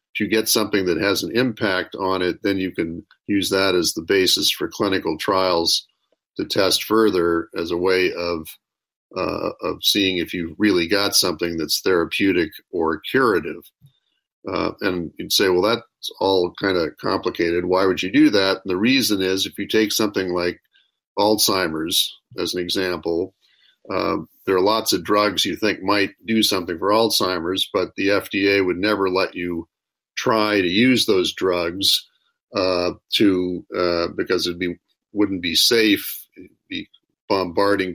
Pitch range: 90-110 Hz